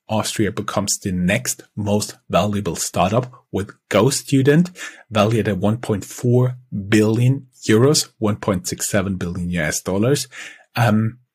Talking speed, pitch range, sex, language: 100 wpm, 100-125 Hz, male, English